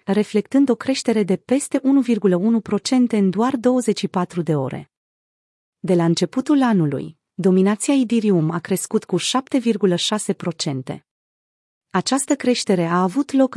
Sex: female